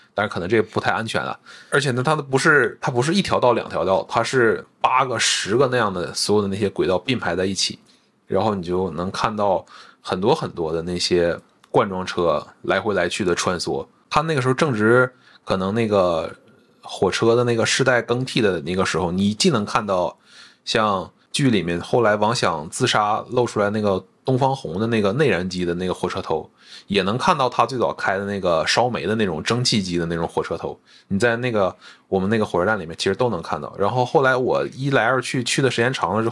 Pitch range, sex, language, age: 95-130 Hz, male, Chinese, 20-39